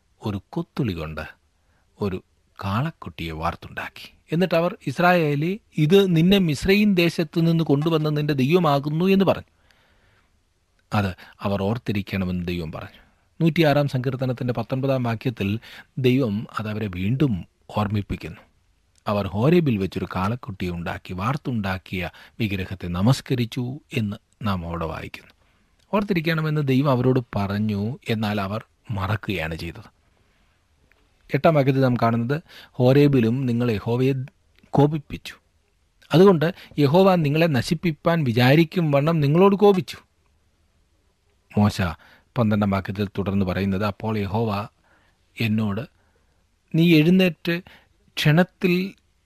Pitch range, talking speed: 95-145 Hz, 95 wpm